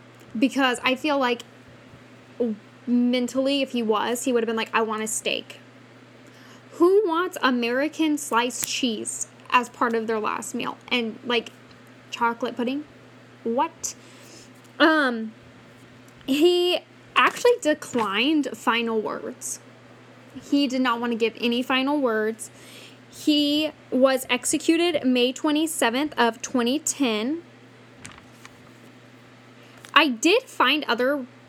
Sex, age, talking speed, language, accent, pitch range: female, 10-29, 110 wpm, English, American, 225-275 Hz